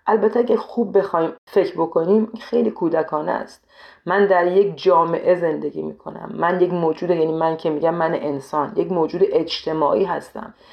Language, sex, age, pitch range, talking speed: Persian, female, 40-59, 155-220 Hz, 155 wpm